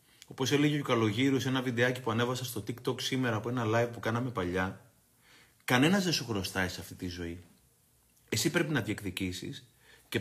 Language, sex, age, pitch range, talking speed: Greek, male, 30-49, 110-145 Hz, 180 wpm